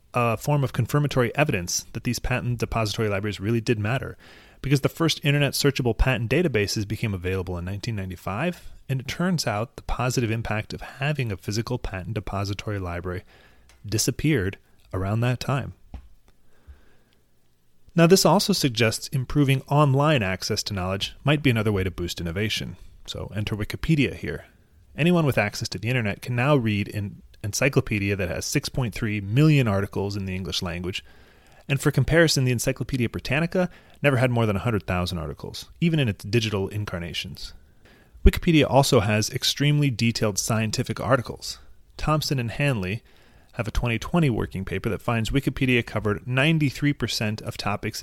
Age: 30-49